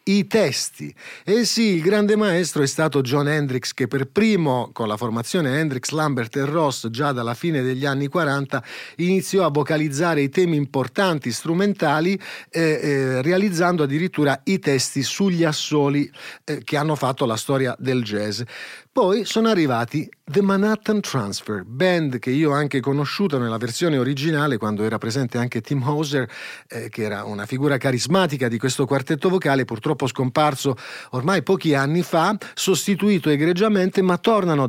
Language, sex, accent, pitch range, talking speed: Italian, male, native, 135-175 Hz, 155 wpm